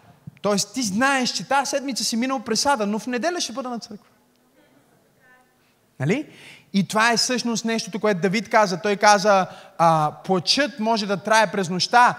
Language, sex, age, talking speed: Bulgarian, male, 20-39, 165 wpm